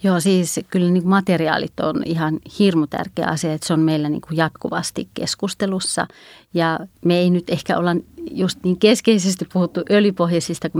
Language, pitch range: Finnish, 160-185 Hz